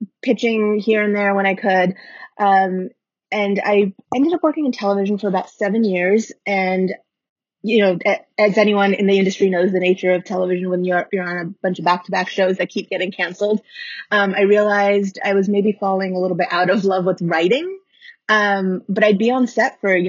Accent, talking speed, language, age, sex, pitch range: American, 205 wpm, English, 20-39, female, 185-230 Hz